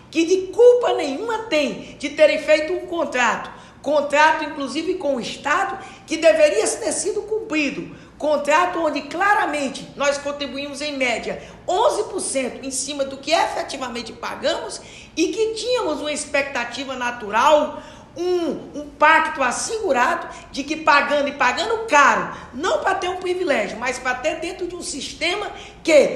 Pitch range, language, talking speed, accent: 245-300 Hz, English, 145 wpm, Brazilian